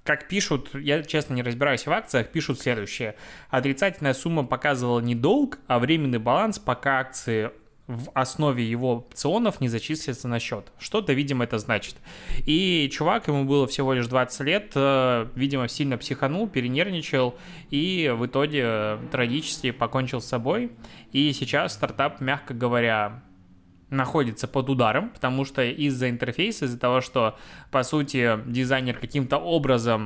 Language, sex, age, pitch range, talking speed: Russian, male, 20-39, 120-145 Hz, 140 wpm